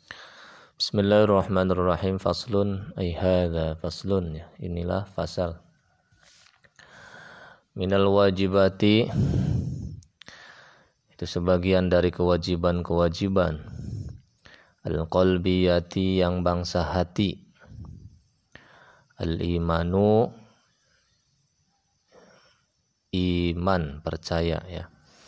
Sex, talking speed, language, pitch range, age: male, 50 wpm, Indonesian, 85-95 Hz, 20-39